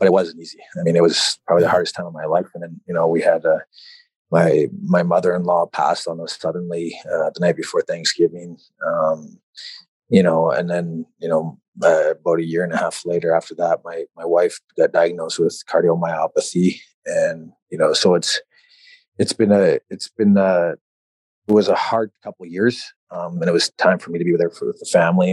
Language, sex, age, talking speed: English, male, 30-49, 215 wpm